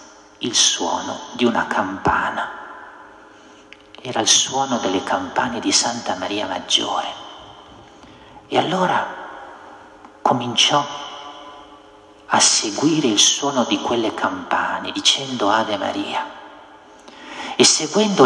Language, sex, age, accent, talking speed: Italian, male, 50-69, native, 95 wpm